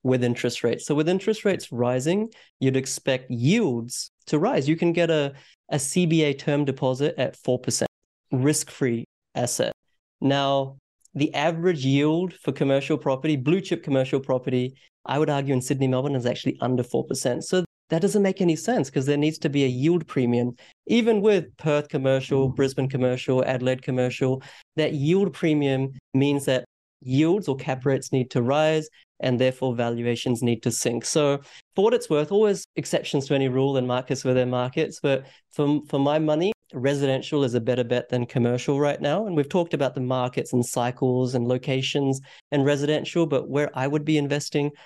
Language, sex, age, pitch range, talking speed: English, male, 30-49, 130-155 Hz, 175 wpm